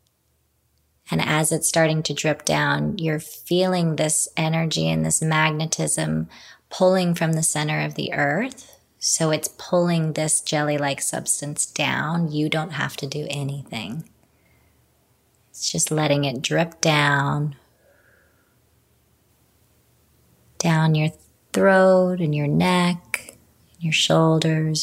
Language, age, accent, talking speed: English, 30-49, American, 115 wpm